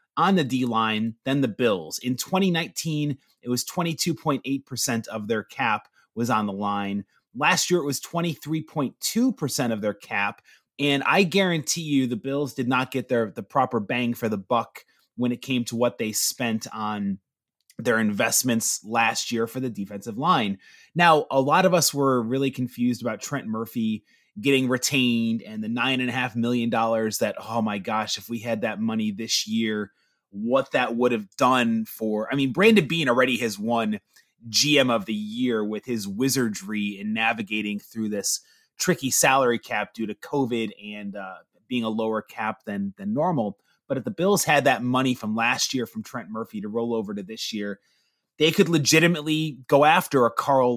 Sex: male